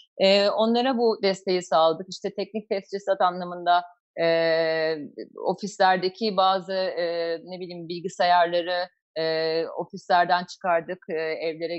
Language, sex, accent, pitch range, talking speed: Turkish, female, native, 165-205 Hz, 80 wpm